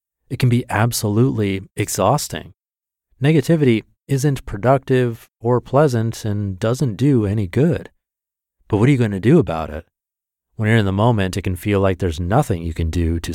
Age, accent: 30-49, American